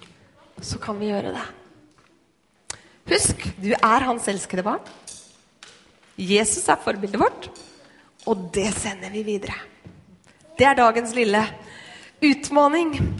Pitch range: 215-280 Hz